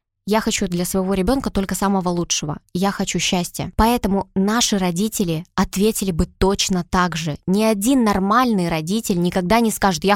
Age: 20-39